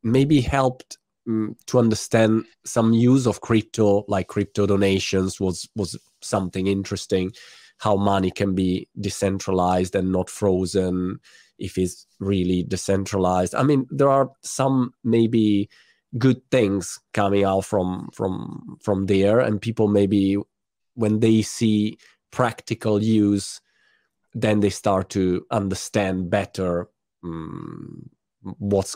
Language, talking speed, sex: Italian, 120 wpm, male